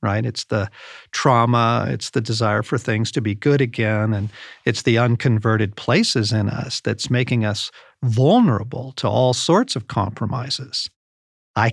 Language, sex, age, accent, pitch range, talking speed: English, male, 50-69, American, 110-140 Hz, 155 wpm